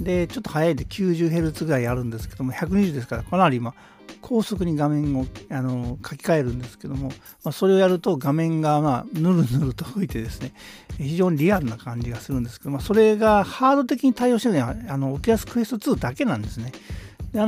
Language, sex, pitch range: Japanese, male, 125-210 Hz